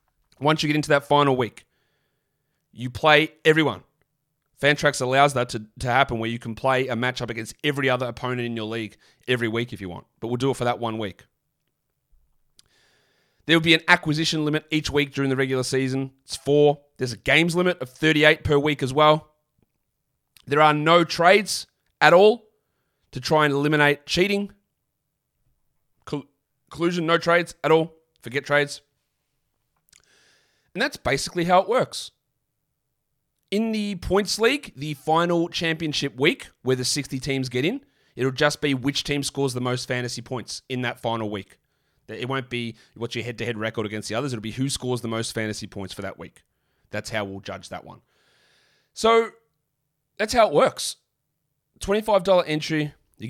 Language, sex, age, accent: English, male, 30-49, Australian